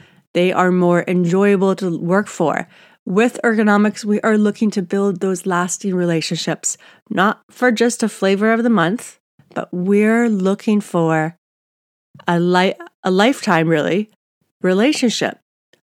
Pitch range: 175-225 Hz